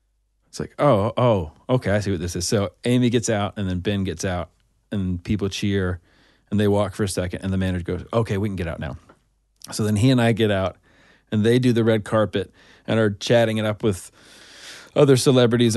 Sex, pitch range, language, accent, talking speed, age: male, 100-125 Hz, English, American, 225 wpm, 30-49